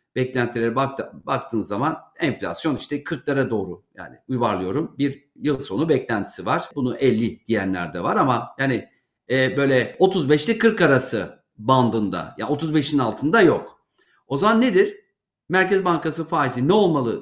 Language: Turkish